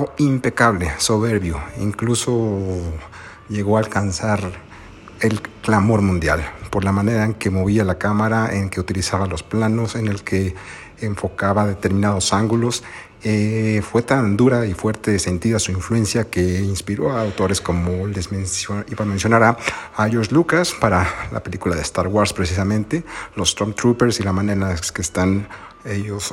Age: 50-69